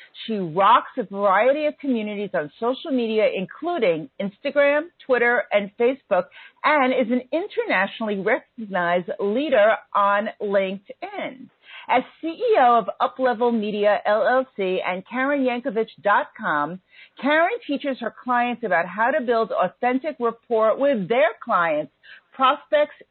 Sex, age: female, 40-59